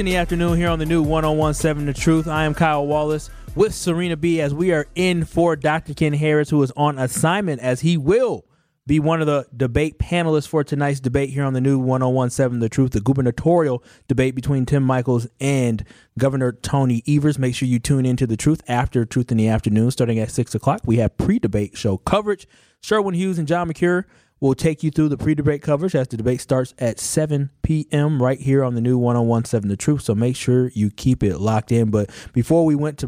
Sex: male